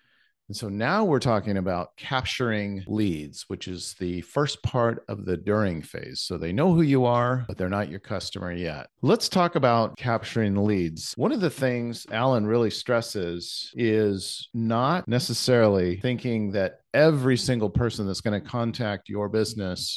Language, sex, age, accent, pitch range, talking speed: English, male, 40-59, American, 100-125 Hz, 165 wpm